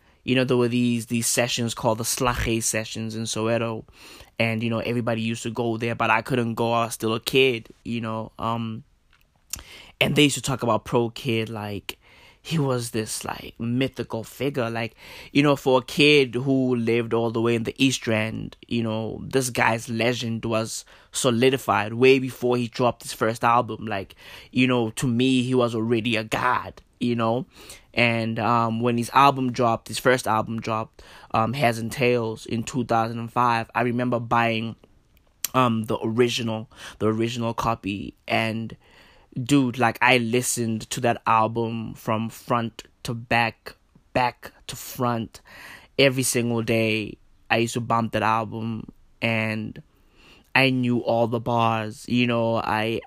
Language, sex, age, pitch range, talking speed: English, male, 20-39, 110-125 Hz, 165 wpm